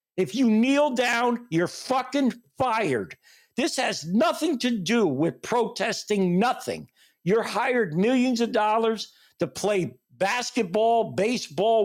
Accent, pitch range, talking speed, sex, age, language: American, 195-250 Hz, 120 wpm, male, 60-79, English